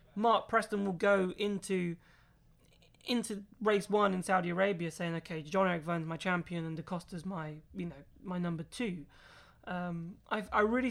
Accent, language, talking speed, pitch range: British, English, 170 wpm, 180-225 Hz